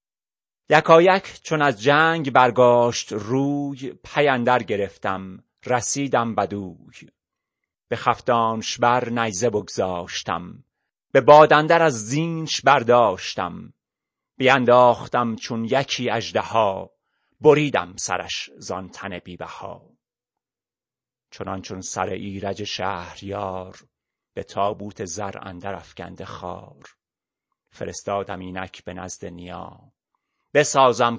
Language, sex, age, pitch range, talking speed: Persian, male, 30-49, 100-135 Hz, 90 wpm